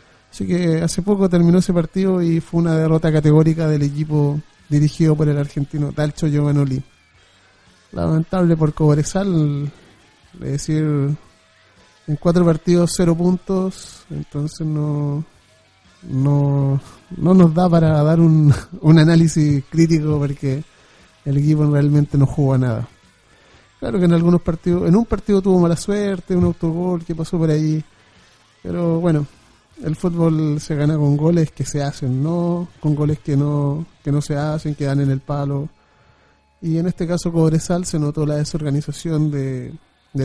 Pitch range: 140-170 Hz